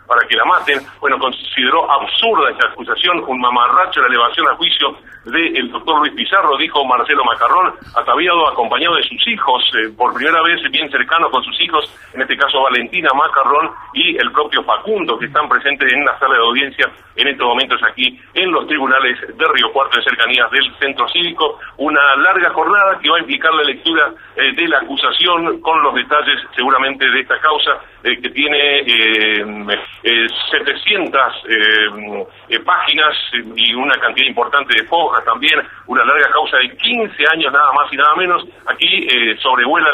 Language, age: Spanish, 40-59